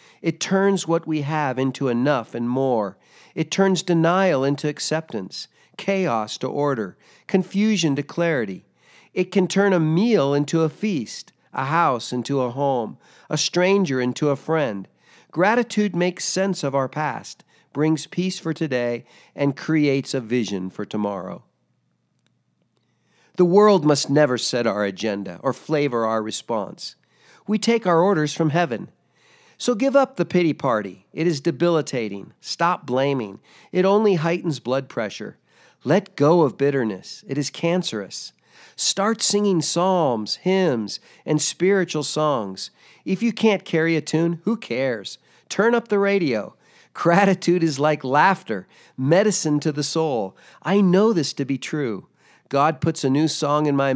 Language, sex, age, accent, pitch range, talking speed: English, male, 50-69, American, 135-185 Hz, 150 wpm